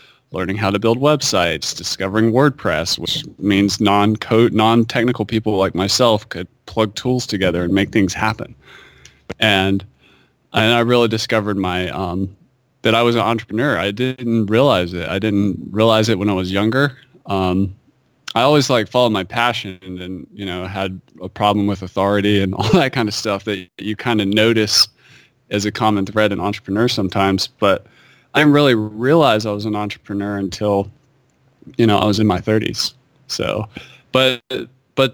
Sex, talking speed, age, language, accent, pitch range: male, 170 wpm, 20-39, English, American, 100-125 Hz